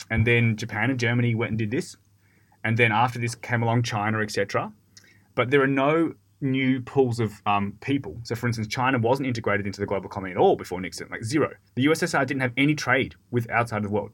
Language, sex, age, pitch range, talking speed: English, male, 20-39, 105-130 Hz, 230 wpm